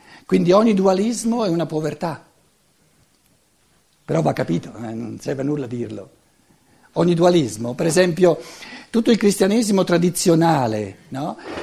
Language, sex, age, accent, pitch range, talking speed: Italian, male, 60-79, native, 170-235 Hz, 125 wpm